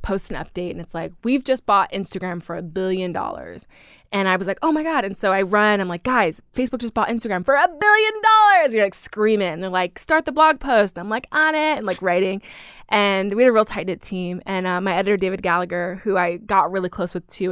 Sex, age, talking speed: female, 20-39, 255 wpm